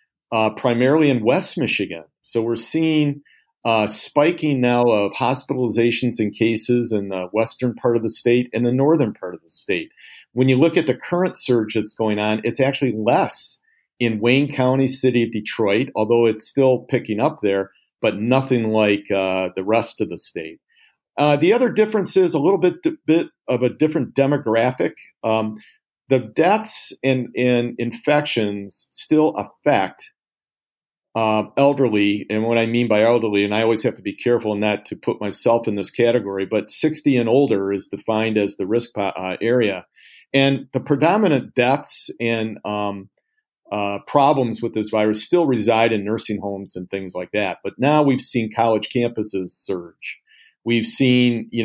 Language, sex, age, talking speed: English, male, 50-69, 175 wpm